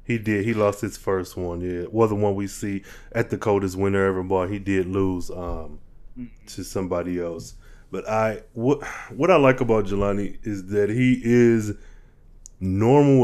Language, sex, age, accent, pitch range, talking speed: English, male, 20-39, American, 95-115 Hz, 170 wpm